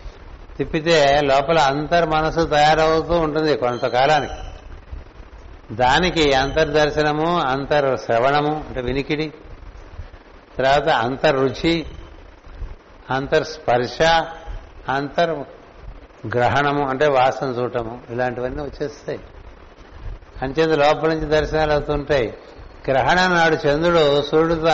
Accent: native